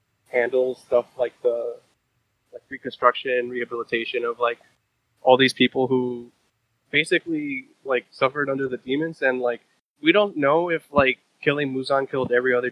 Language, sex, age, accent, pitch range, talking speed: English, male, 20-39, American, 120-170 Hz, 145 wpm